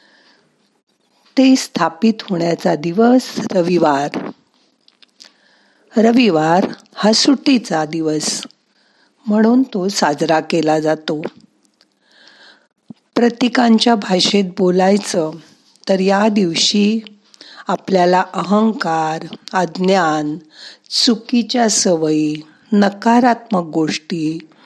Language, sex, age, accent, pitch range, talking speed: Marathi, female, 50-69, native, 165-225 Hz, 65 wpm